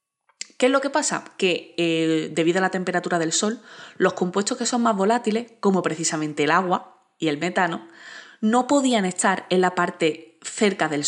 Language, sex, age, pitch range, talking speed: Spanish, female, 20-39, 165-220 Hz, 185 wpm